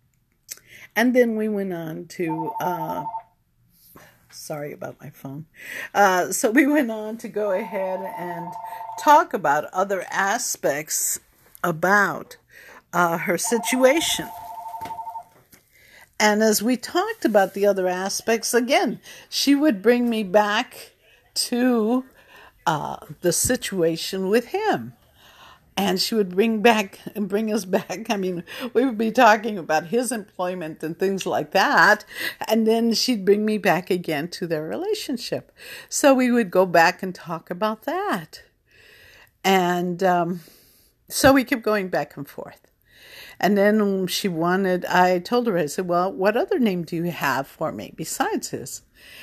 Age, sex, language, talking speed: 60-79, female, English, 145 wpm